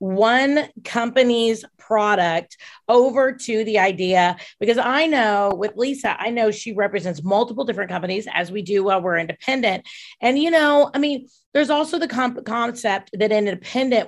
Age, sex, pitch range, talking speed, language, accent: 30-49, female, 195-240 Hz, 160 wpm, English, American